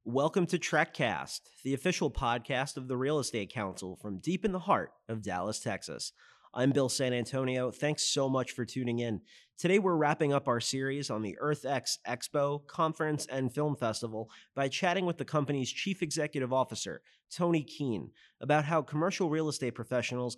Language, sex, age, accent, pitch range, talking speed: English, male, 30-49, American, 115-145 Hz, 175 wpm